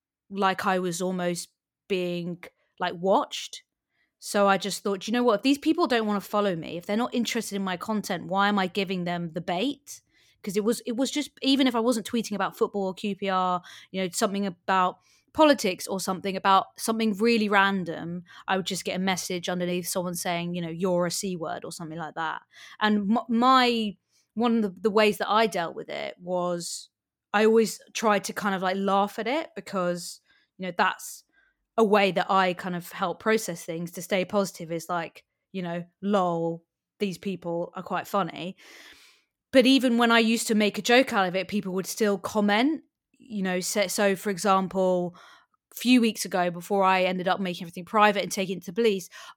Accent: British